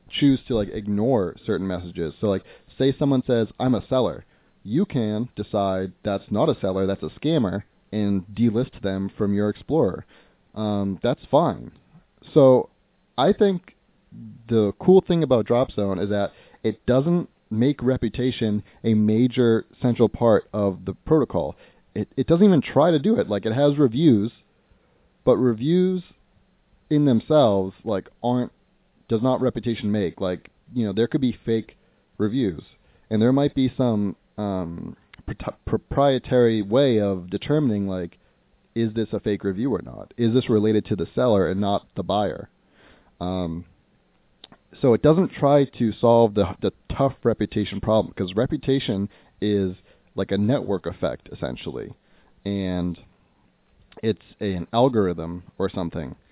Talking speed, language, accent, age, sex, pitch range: 150 wpm, English, American, 30-49, male, 100-130 Hz